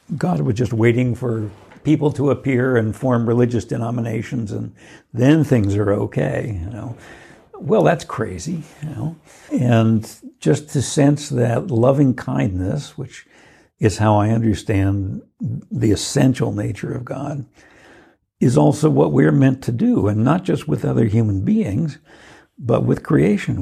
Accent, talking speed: American, 145 wpm